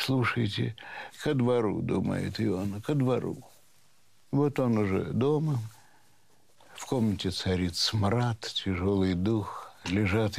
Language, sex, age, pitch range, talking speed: Russian, male, 60-79, 95-135 Hz, 105 wpm